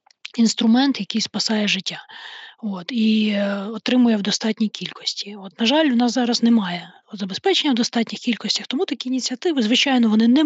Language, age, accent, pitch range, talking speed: Ukrainian, 20-39, native, 205-240 Hz, 155 wpm